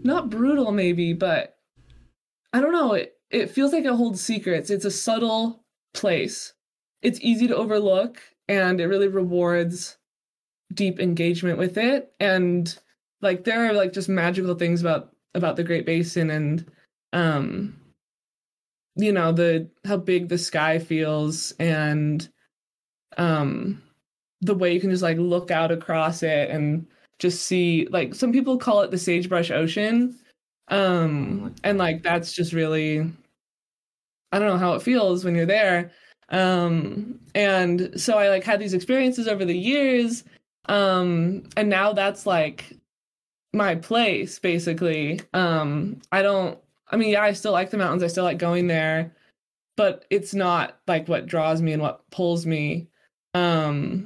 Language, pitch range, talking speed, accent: English, 165-205 Hz, 155 wpm, American